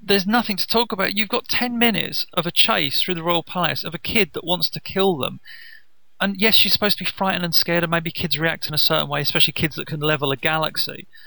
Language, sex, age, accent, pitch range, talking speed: English, male, 30-49, British, 160-205 Hz, 255 wpm